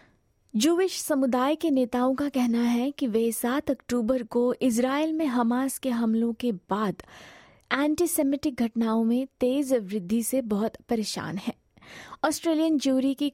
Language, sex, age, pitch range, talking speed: Hindi, female, 20-39, 230-285 Hz, 140 wpm